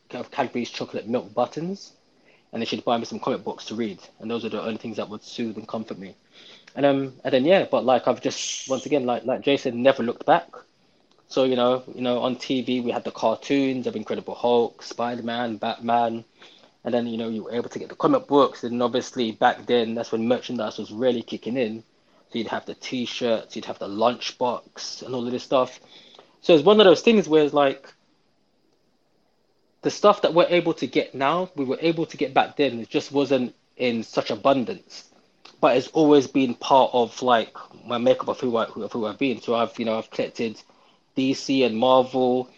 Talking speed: 215 wpm